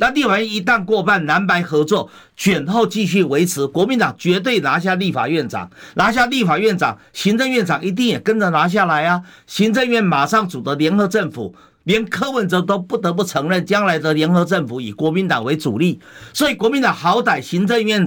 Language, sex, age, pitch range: Chinese, male, 50-69, 170-225 Hz